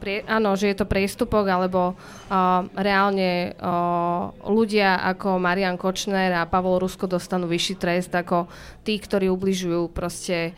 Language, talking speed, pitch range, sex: Slovak, 135 wpm, 175-195 Hz, female